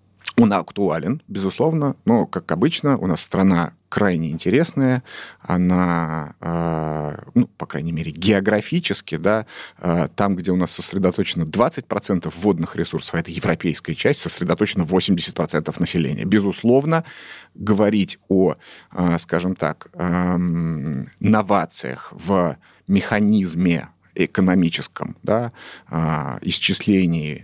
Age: 30-49